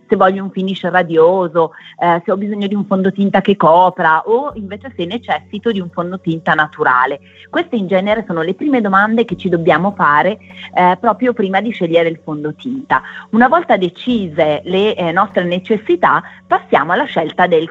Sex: female